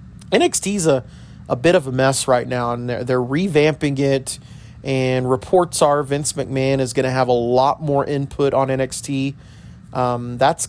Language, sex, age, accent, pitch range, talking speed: English, male, 30-49, American, 125-145 Hz, 180 wpm